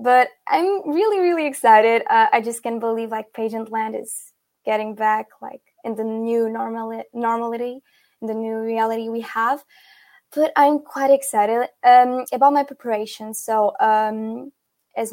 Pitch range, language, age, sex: 225-260 Hz, English, 10-29, female